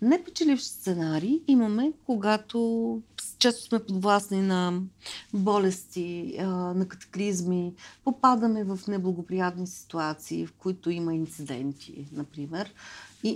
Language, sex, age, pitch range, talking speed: Bulgarian, female, 50-69, 175-225 Hz, 95 wpm